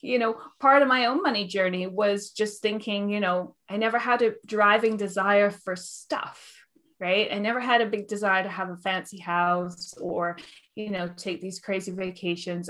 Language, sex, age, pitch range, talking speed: English, female, 20-39, 175-220 Hz, 190 wpm